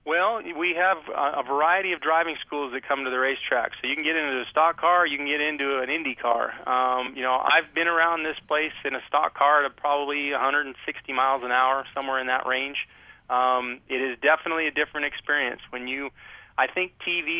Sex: male